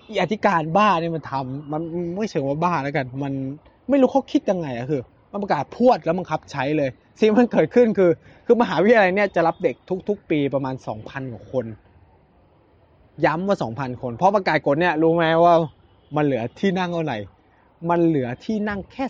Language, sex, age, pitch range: Thai, male, 20-39, 120-190 Hz